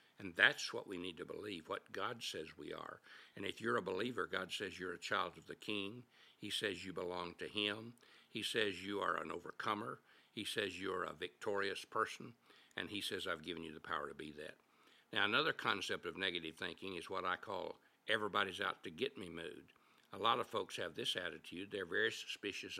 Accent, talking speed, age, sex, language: American, 210 wpm, 60-79, male, English